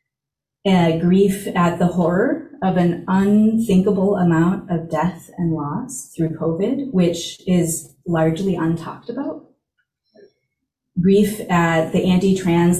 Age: 30-49